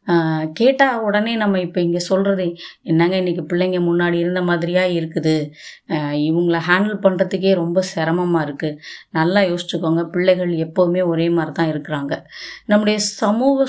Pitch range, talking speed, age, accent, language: 175-215 Hz, 125 wpm, 20-39, native, Tamil